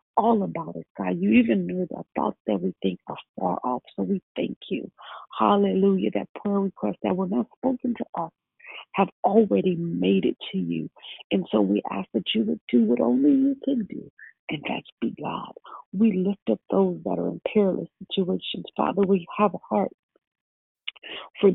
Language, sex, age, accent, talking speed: English, female, 50-69, American, 185 wpm